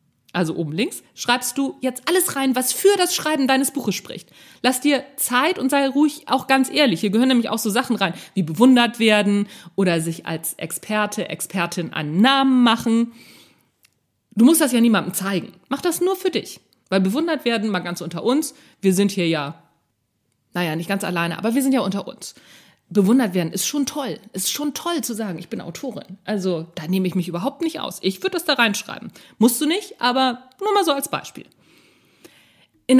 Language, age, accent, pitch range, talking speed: German, 40-59, German, 190-275 Hz, 200 wpm